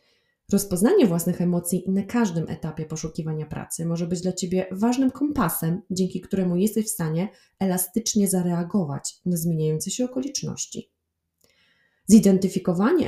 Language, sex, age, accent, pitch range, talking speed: Polish, female, 20-39, native, 155-200 Hz, 120 wpm